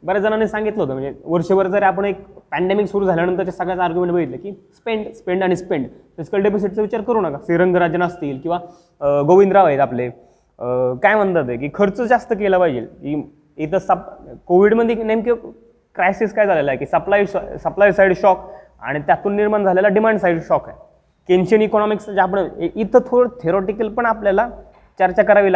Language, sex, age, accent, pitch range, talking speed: Marathi, male, 20-39, native, 160-200 Hz, 170 wpm